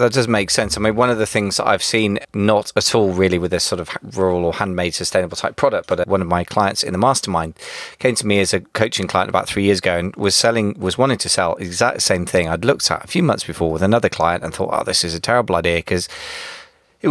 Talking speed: 265 wpm